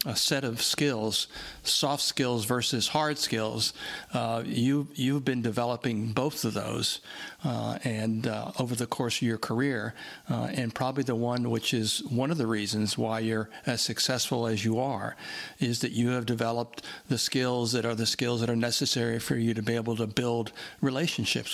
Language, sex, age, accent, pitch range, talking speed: English, male, 60-79, American, 115-135 Hz, 180 wpm